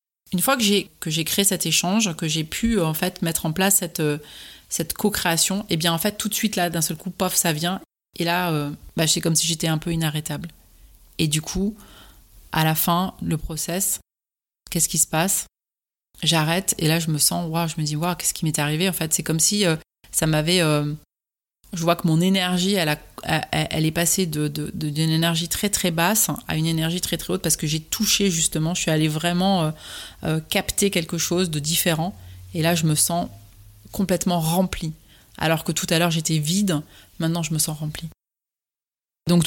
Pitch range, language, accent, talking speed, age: 160-185 Hz, French, French, 215 wpm, 30-49